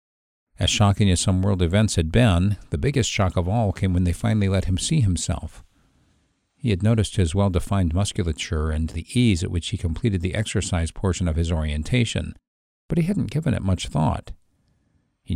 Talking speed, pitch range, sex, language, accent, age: 190 wpm, 90-120 Hz, male, English, American, 50-69